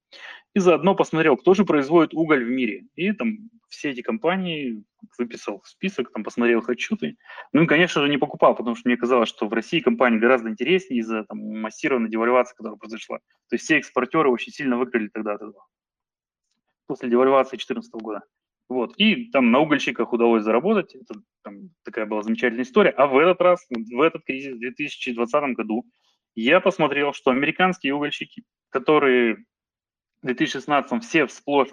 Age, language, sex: 20-39, Russian, male